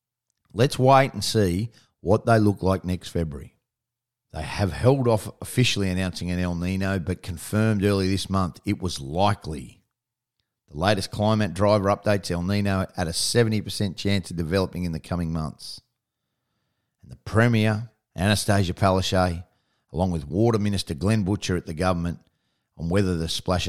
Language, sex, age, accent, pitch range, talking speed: English, male, 40-59, Australian, 95-120 Hz, 155 wpm